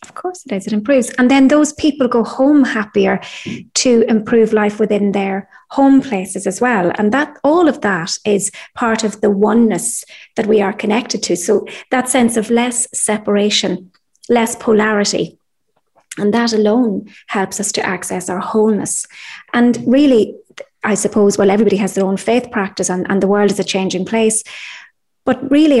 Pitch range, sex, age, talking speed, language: 195-240 Hz, female, 30-49, 175 wpm, English